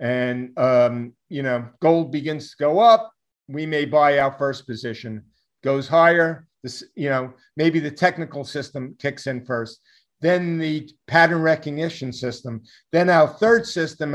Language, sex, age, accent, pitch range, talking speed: English, male, 50-69, American, 135-165 Hz, 155 wpm